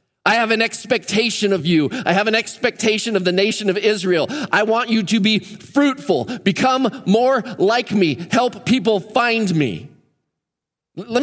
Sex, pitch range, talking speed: male, 165-225 Hz, 160 wpm